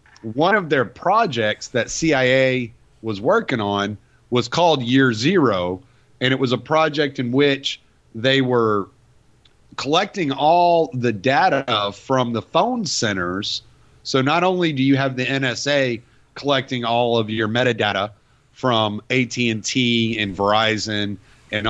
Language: English